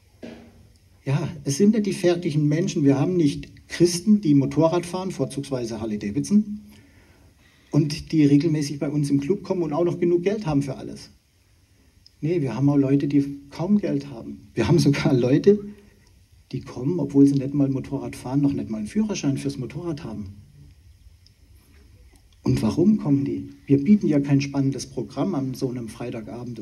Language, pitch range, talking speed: German, 95-145 Hz, 170 wpm